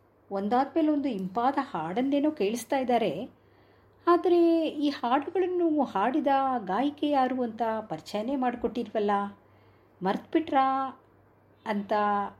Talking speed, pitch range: 85 wpm, 185-270 Hz